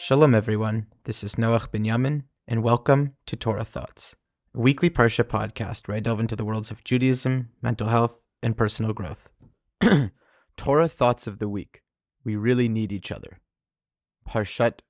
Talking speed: 160 wpm